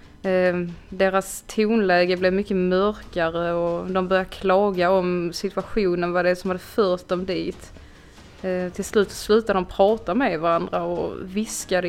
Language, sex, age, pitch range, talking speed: Swedish, female, 20-39, 180-215 Hz, 135 wpm